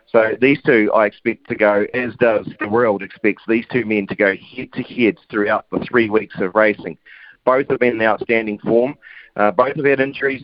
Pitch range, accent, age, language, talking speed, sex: 110-125 Hz, Australian, 40-59, English, 200 wpm, male